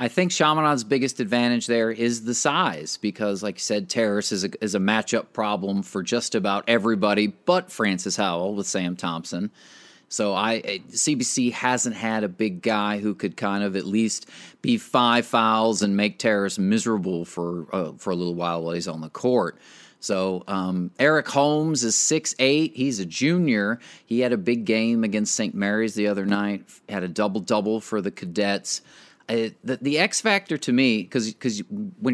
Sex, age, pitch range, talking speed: male, 30-49, 100-120 Hz, 185 wpm